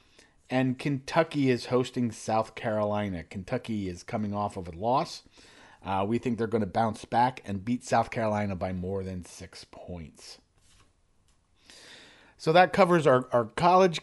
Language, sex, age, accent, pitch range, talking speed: English, male, 40-59, American, 105-135 Hz, 155 wpm